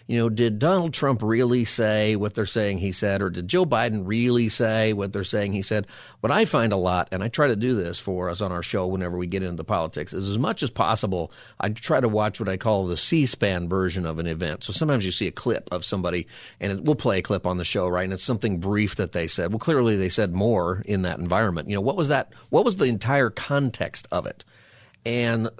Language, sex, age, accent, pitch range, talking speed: English, male, 40-59, American, 100-125 Hz, 255 wpm